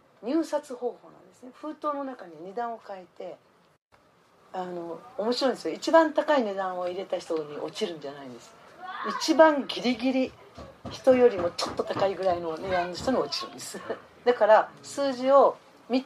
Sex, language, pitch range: female, Japanese, 175-270 Hz